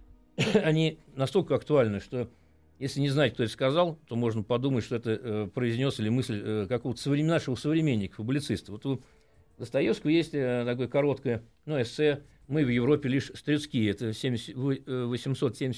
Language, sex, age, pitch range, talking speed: Russian, male, 50-69, 115-145 Hz, 155 wpm